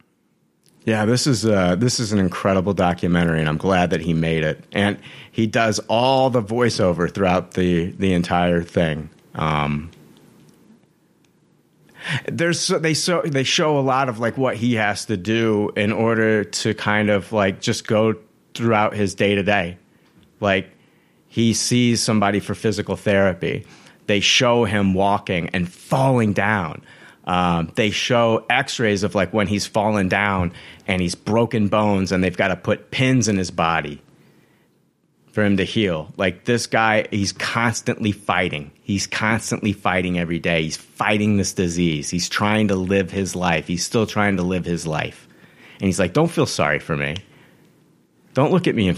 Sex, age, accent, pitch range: male, 30-49, American, 90-115 Hz